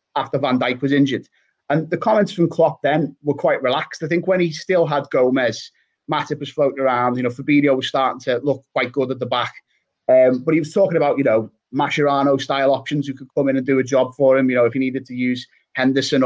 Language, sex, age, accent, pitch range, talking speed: English, male, 30-49, British, 130-155 Hz, 245 wpm